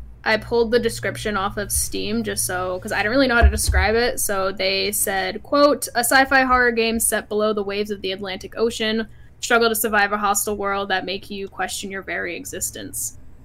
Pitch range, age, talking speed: 190-230 Hz, 10-29, 210 wpm